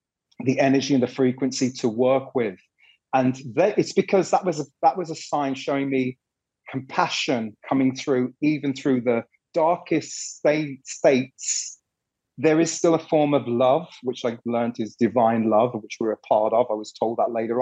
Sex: male